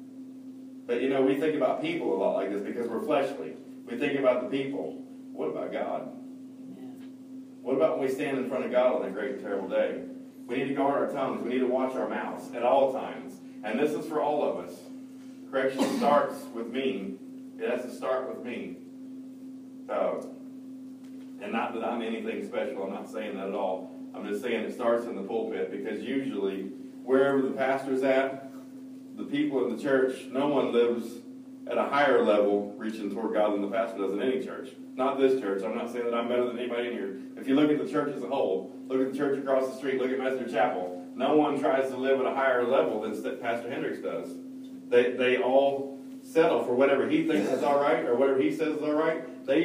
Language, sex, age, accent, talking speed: English, male, 40-59, American, 215 wpm